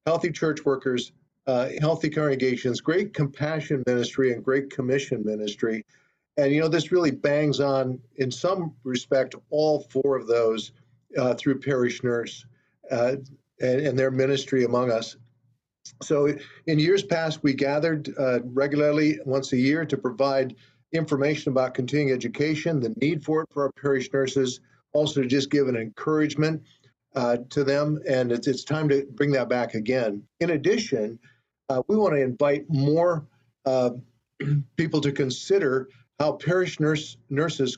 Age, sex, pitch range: 50-69, male, 125-150 Hz